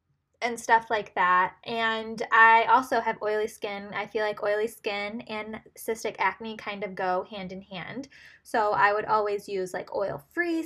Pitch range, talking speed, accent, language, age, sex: 205-235 Hz, 165 wpm, American, English, 10-29, female